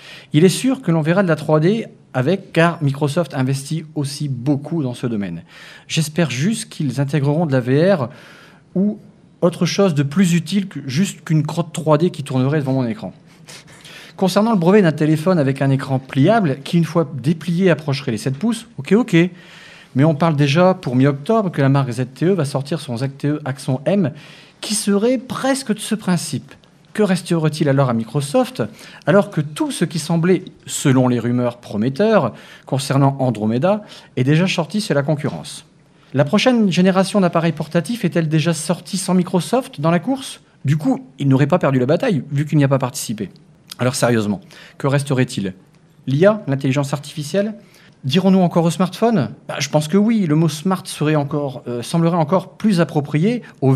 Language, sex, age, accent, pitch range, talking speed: French, male, 40-59, French, 140-185 Hz, 175 wpm